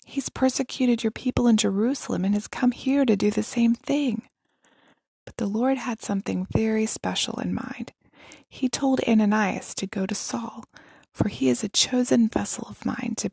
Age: 20-39